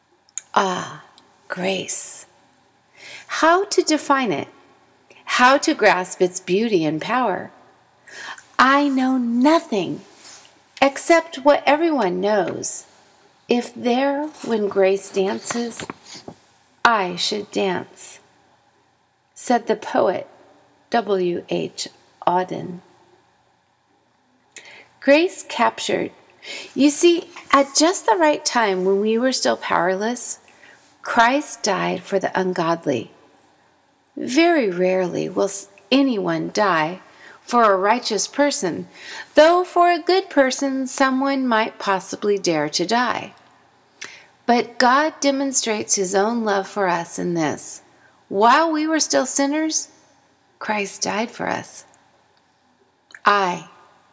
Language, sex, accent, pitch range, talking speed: English, female, American, 195-280 Hz, 100 wpm